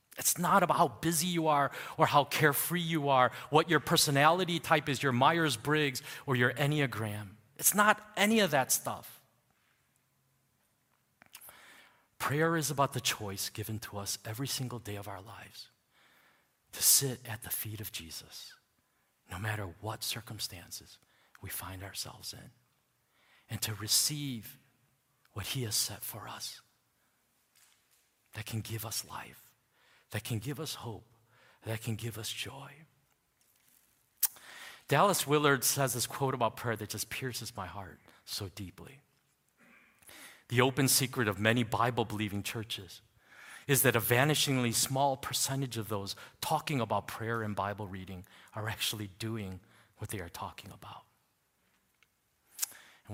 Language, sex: English, male